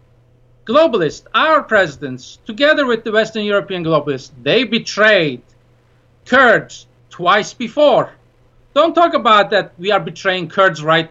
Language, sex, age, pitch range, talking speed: English, male, 50-69, 150-225 Hz, 125 wpm